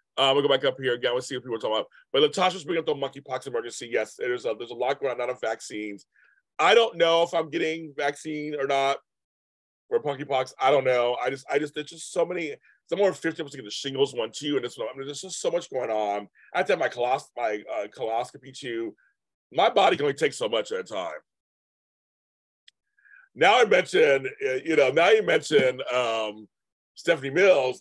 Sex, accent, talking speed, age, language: male, American, 230 wpm, 30-49, English